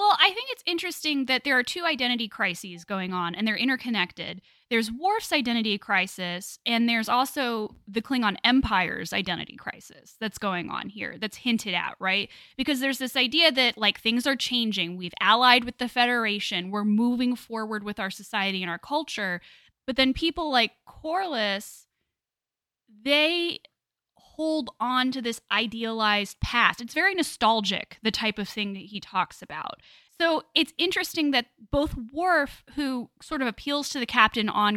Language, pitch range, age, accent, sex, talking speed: English, 200-265 Hz, 10-29, American, female, 165 wpm